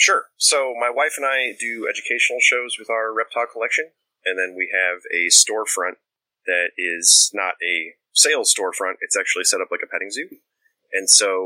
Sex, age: male, 30-49